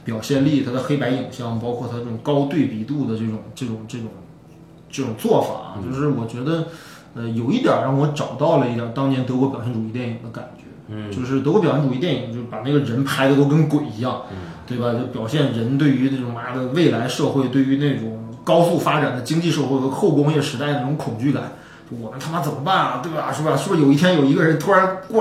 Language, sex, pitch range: Chinese, male, 120-155 Hz